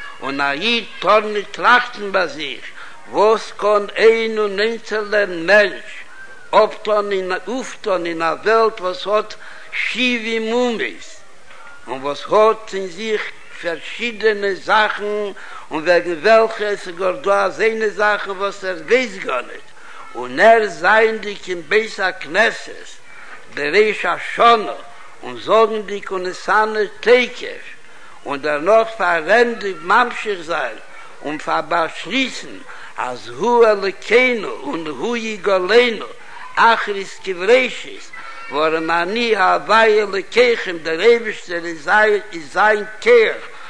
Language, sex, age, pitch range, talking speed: Hebrew, male, 60-79, 195-235 Hz, 105 wpm